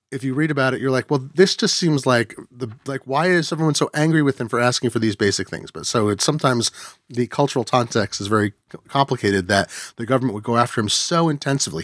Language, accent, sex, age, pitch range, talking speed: English, American, male, 30-49, 115-145 Hz, 235 wpm